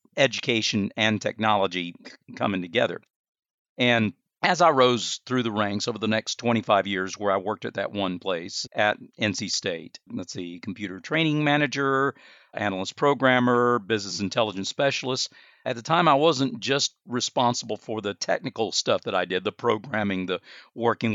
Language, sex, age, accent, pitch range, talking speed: English, male, 50-69, American, 100-120 Hz, 155 wpm